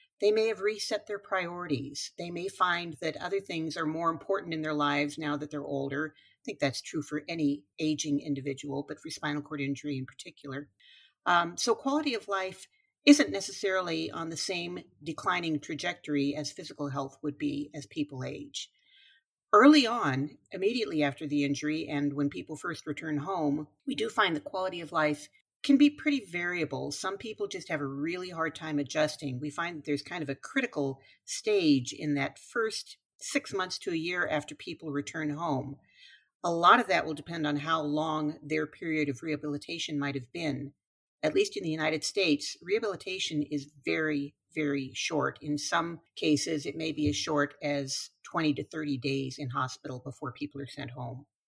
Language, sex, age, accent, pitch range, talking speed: English, female, 50-69, American, 145-185 Hz, 185 wpm